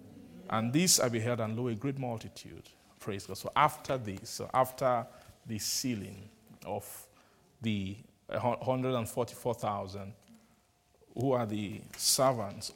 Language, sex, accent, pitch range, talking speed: English, male, Nigerian, 105-130 Hz, 120 wpm